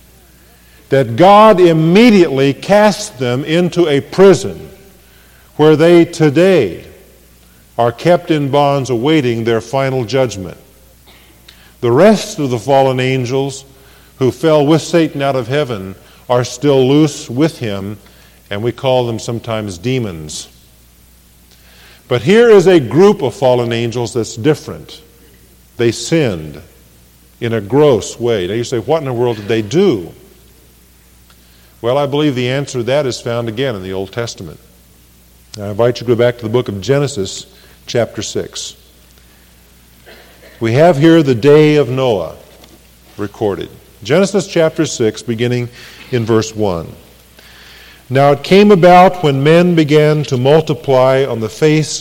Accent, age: American, 50-69